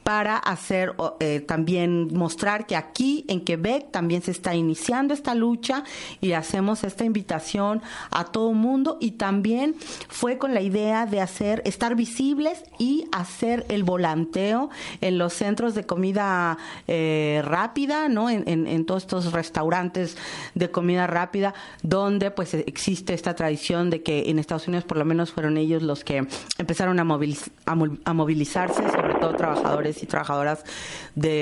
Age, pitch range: 40-59, 165-215 Hz